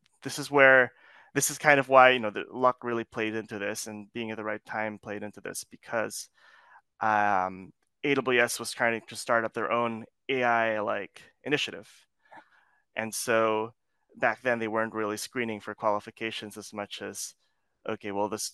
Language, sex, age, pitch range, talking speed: English, male, 20-39, 105-120 Hz, 170 wpm